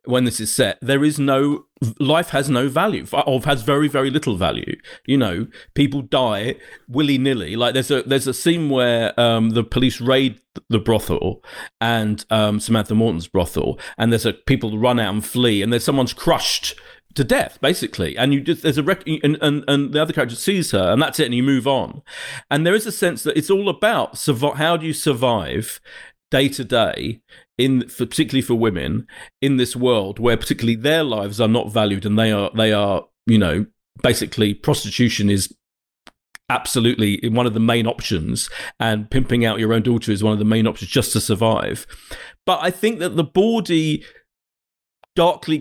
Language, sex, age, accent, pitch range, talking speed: English, male, 40-59, British, 110-150 Hz, 190 wpm